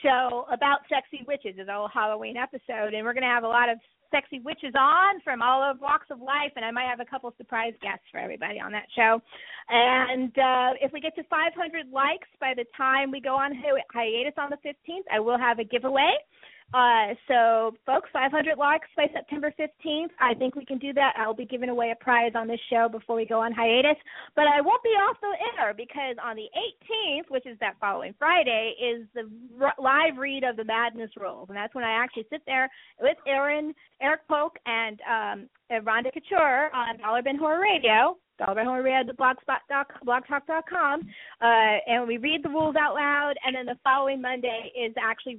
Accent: American